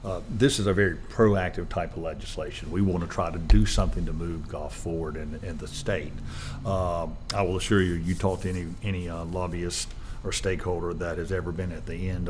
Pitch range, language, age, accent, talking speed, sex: 85-105 Hz, English, 50-69, American, 220 wpm, male